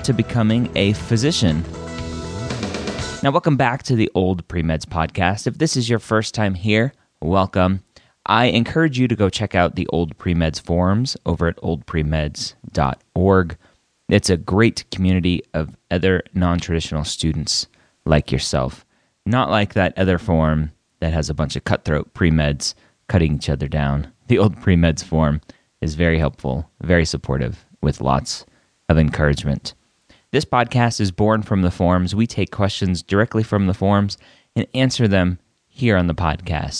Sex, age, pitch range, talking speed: male, 30-49, 80-110 Hz, 155 wpm